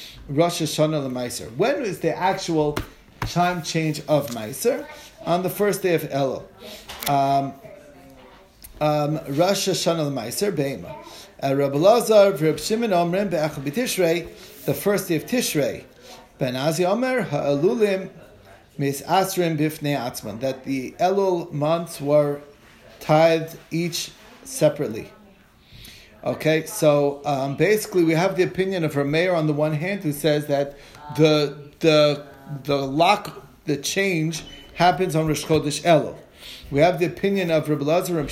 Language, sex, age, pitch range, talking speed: English, male, 40-59, 145-185 Hz, 135 wpm